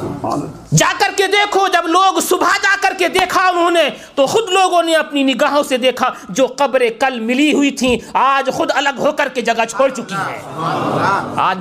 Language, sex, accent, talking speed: English, male, Indian, 195 wpm